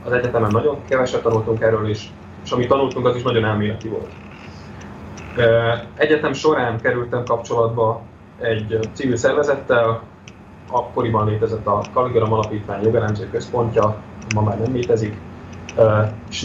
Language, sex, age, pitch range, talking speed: Slovak, male, 20-39, 105-115 Hz, 130 wpm